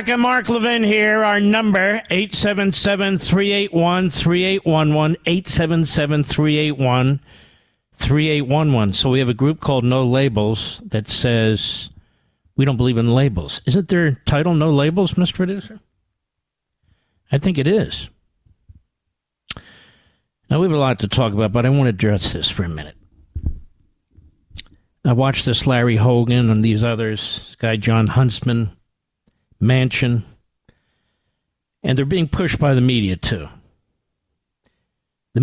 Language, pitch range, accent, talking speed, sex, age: English, 110-150 Hz, American, 125 wpm, male, 50-69